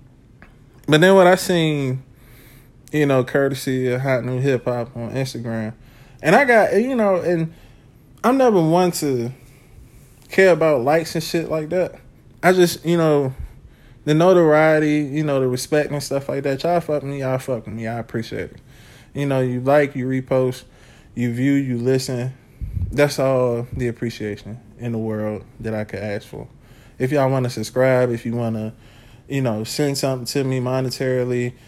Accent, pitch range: American, 120-140 Hz